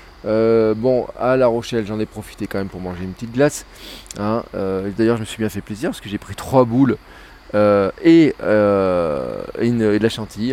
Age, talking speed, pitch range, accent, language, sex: 20-39, 220 wpm, 100-130 Hz, French, French, male